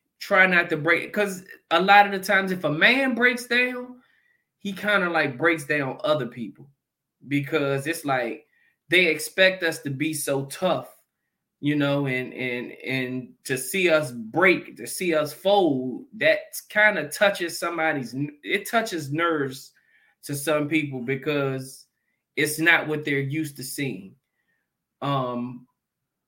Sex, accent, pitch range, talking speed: male, American, 140-185 Hz, 150 wpm